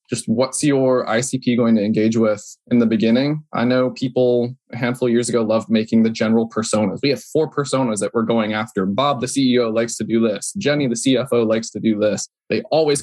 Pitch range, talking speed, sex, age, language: 110-135 Hz, 220 wpm, male, 20-39, English